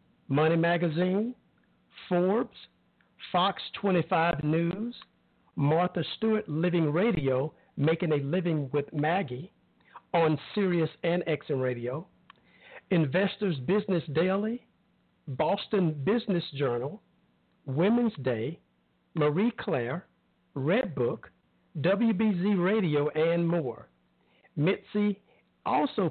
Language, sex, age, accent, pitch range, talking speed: English, male, 50-69, American, 135-200 Hz, 85 wpm